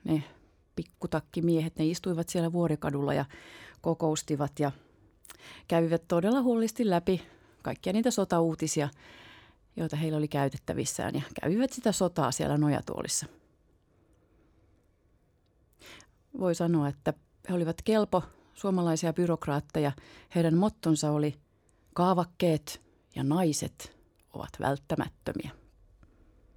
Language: Finnish